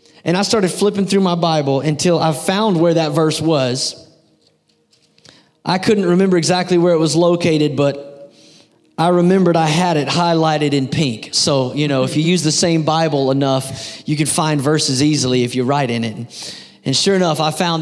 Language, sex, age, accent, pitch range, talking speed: English, male, 30-49, American, 155-205 Hz, 190 wpm